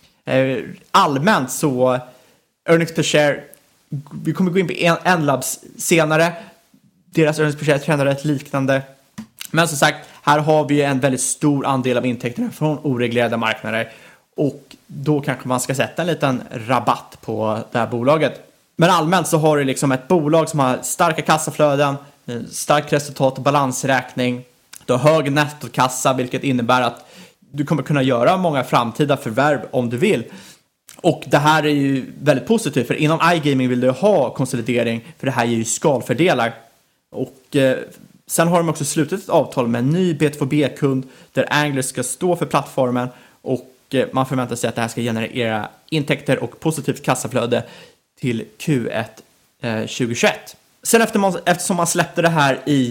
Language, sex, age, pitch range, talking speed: Swedish, male, 20-39, 125-155 Hz, 165 wpm